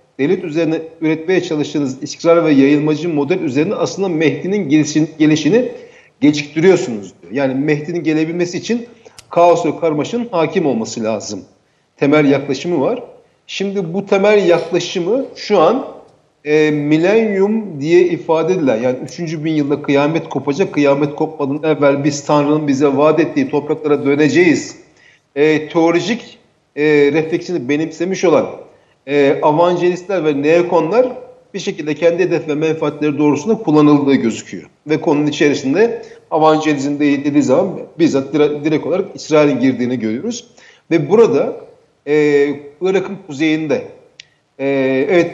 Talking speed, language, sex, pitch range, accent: 125 wpm, Turkish, male, 145-175 Hz, native